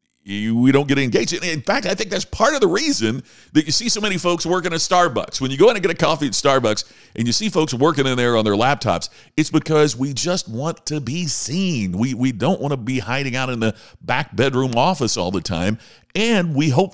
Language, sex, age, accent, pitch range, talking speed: English, male, 50-69, American, 115-170 Hz, 245 wpm